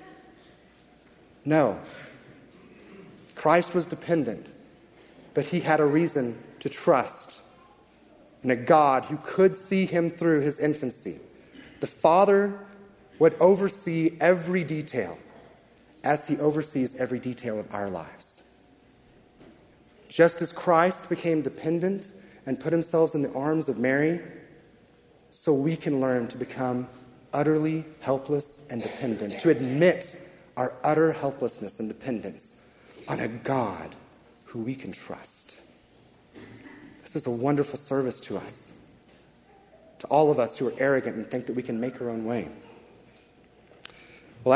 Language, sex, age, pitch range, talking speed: English, male, 30-49, 130-165 Hz, 130 wpm